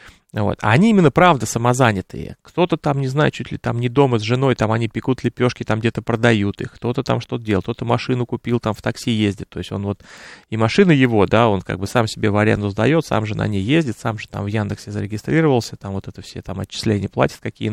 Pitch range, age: 110-150 Hz, 30-49